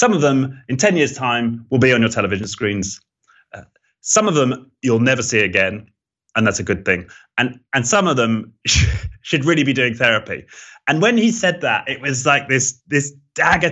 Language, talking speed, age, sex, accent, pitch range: English, 205 wpm, 30-49, male, British, 95-125 Hz